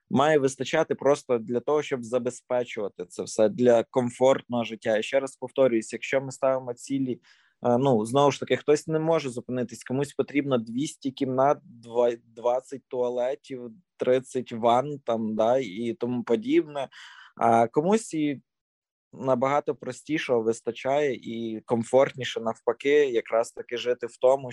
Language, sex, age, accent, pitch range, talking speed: Ukrainian, male, 20-39, native, 120-145 Hz, 130 wpm